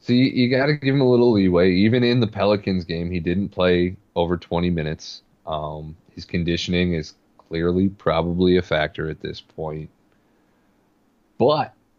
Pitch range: 85-100 Hz